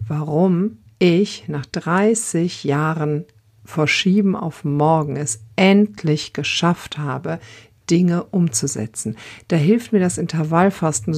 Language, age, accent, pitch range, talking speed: German, 50-69, German, 135-170 Hz, 100 wpm